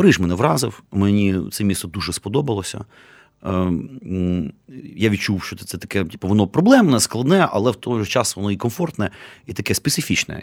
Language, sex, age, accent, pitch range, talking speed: Ukrainian, male, 30-49, native, 90-115 Hz, 165 wpm